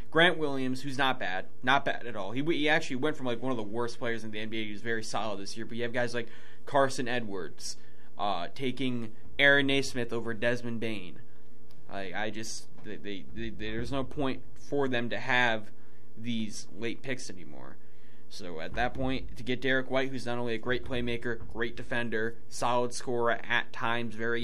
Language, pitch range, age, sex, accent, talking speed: English, 100-120 Hz, 20-39, male, American, 200 wpm